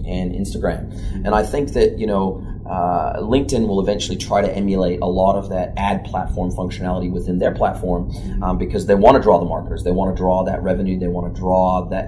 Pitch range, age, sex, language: 90-105 Hz, 30-49, male, Chinese